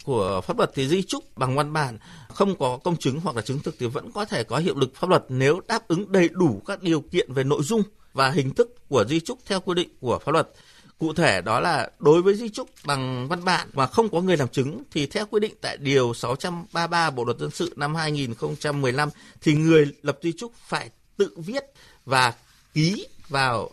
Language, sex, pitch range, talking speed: Vietnamese, male, 130-185 Hz, 230 wpm